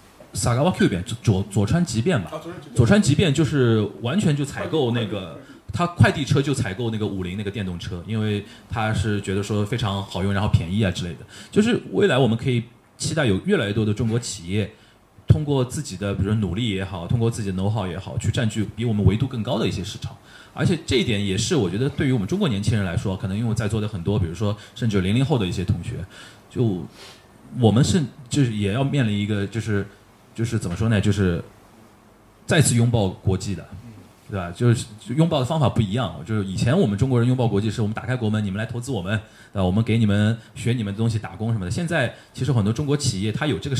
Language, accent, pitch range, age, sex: Chinese, native, 100-125 Hz, 20-39, male